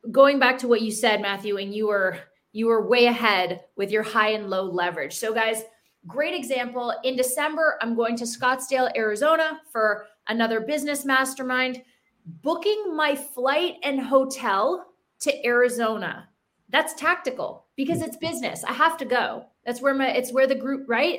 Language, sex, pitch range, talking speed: English, female, 225-310 Hz, 165 wpm